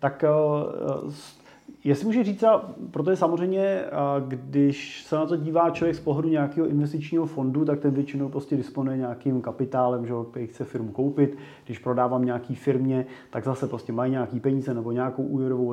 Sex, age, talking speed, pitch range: male, 30-49, 165 wpm, 135-160 Hz